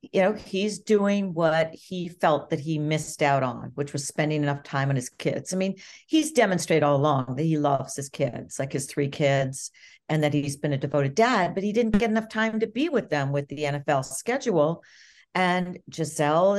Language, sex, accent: English, female, American